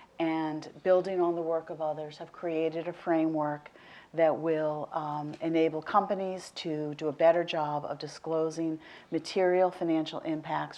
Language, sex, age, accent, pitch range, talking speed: English, female, 40-59, American, 160-180 Hz, 145 wpm